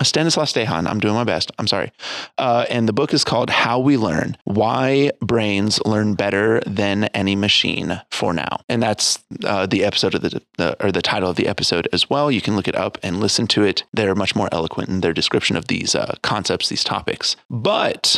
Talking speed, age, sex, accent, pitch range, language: 215 wpm, 20-39, male, American, 95-115 Hz, English